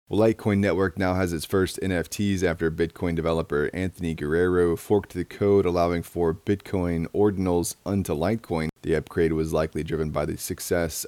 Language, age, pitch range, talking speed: English, 30-49, 85-95 Hz, 165 wpm